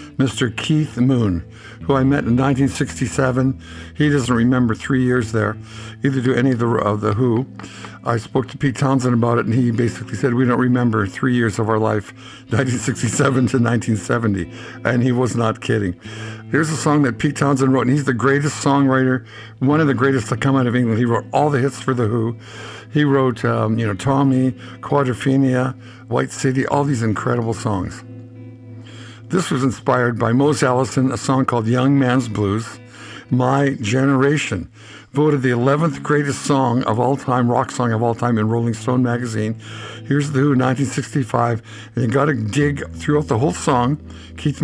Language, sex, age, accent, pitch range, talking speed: English, male, 60-79, American, 115-135 Hz, 180 wpm